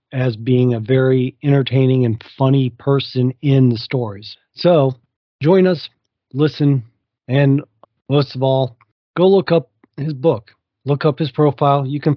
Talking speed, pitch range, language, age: 150 wpm, 130-155 Hz, English, 40-59